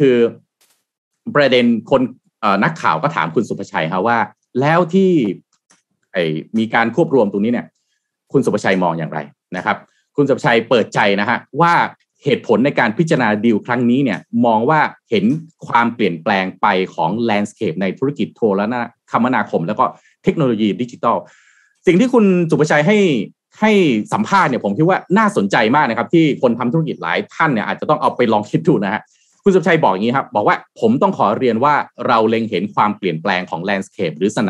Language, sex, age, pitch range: Thai, male, 30-49, 110-170 Hz